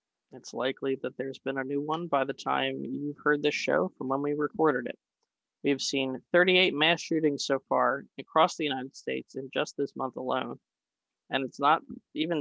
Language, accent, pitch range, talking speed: English, American, 135-155 Hz, 200 wpm